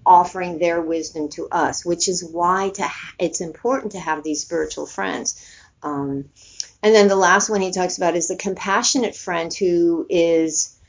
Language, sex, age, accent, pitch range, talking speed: English, female, 50-69, American, 160-200 Hz, 175 wpm